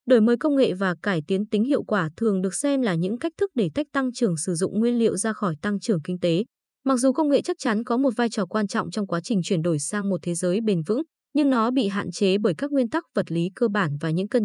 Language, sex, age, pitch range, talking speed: Vietnamese, female, 20-39, 190-255 Hz, 290 wpm